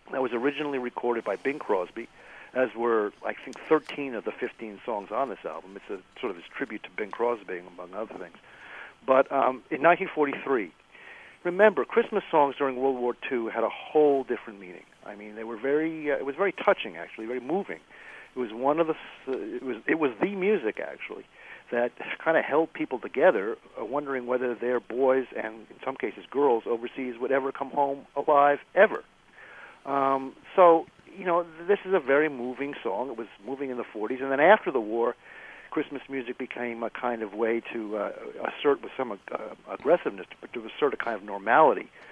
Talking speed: 195 wpm